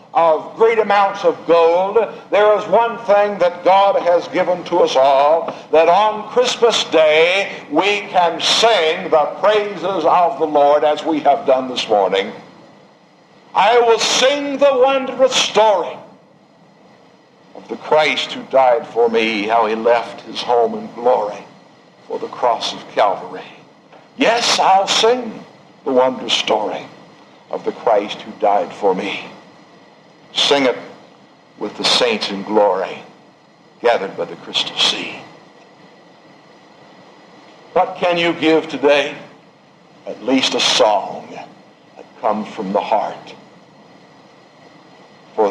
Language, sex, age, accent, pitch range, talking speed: English, male, 60-79, American, 145-215 Hz, 130 wpm